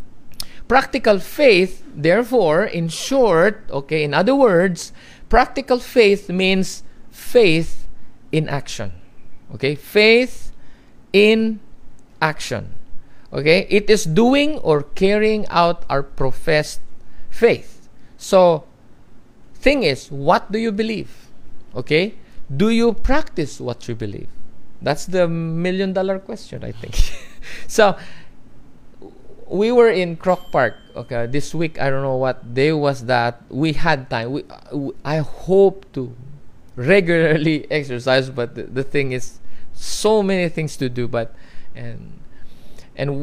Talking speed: 125 wpm